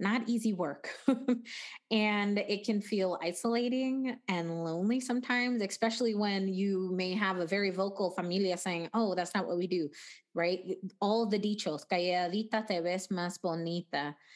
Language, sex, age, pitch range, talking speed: English, female, 20-39, 185-225 Hz, 145 wpm